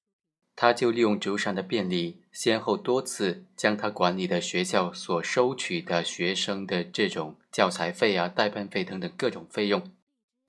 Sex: male